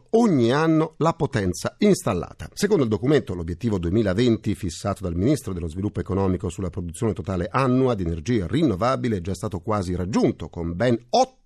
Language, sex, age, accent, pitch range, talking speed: Italian, male, 40-59, native, 95-145 Hz, 160 wpm